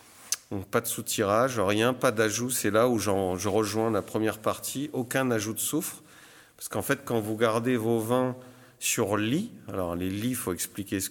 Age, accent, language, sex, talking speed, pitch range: 50-69, French, French, male, 200 wpm, 100-125 Hz